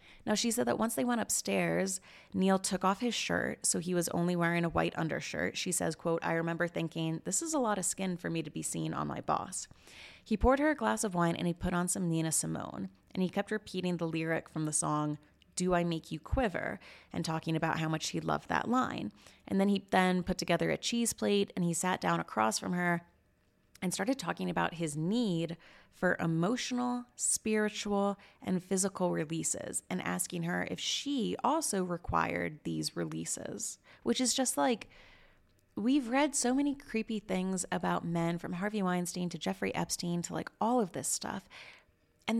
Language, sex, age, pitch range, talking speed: English, female, 30-49, 165-220 Hz, 200 wpm